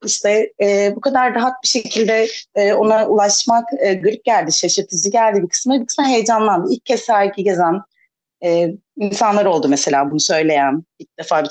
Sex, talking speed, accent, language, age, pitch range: female, 150 wpm, native, Turkish, 30-49, 165-220 Hz